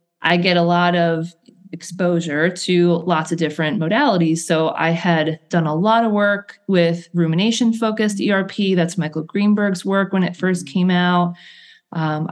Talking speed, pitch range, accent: 160 wpm, 160-205 Hz, American